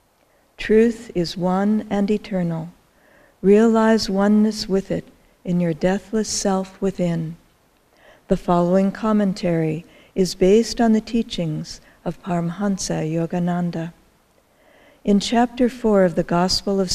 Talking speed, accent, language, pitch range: 115 wpm, American, English, 175-220 Hz